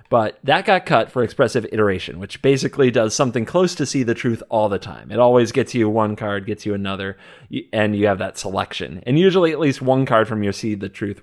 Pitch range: 105-140 Hz